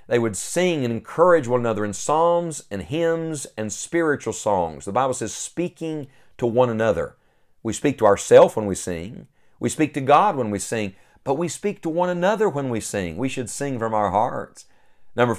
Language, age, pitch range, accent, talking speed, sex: English, 50-69, 105-140 Hz, American, 200 wpm, male